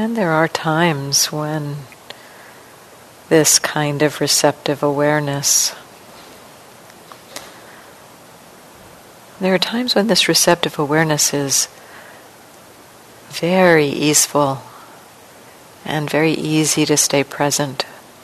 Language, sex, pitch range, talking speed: English, female, 145-165 Hz, 85 wpm